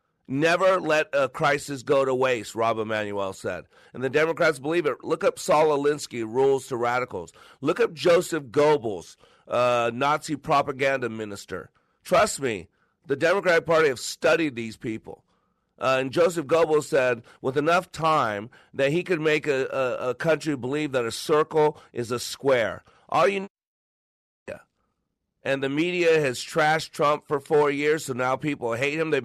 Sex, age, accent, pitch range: male, 40-59, American, 135-160 Hz